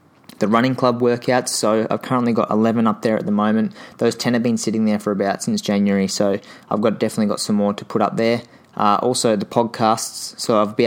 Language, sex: English, male